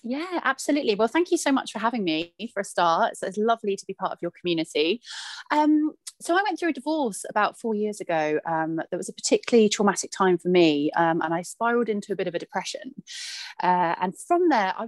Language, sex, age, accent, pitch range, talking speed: English, female, 30-49, British, 175-250 Hz, 225 wpm